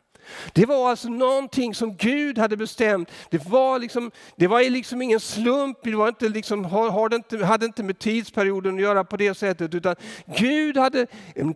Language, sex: Swedish, male